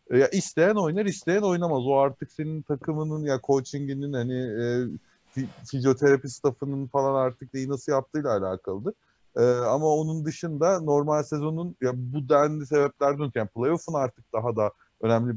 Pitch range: 115-150 Hz